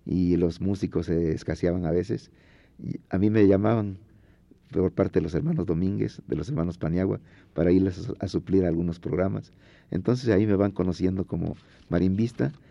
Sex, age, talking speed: male, 50-69, 160 wpm